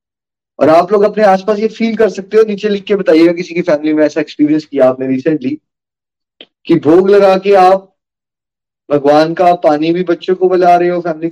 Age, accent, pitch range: 30-49, native, 150-210 Hz